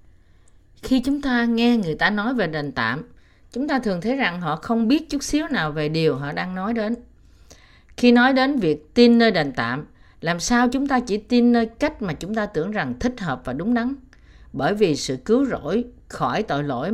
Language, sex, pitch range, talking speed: Vietnamese, female, 150-240 Hz, 215 wpm